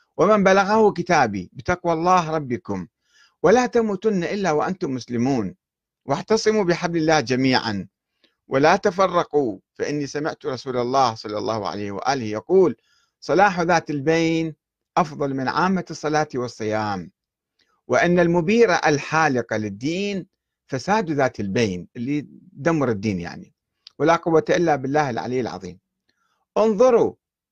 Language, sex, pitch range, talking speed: Arabic, male, 120-175 Hz, 115 wpm